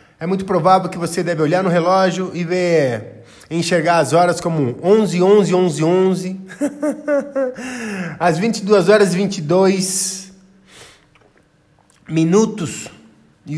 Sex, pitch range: male, 150-190 Hz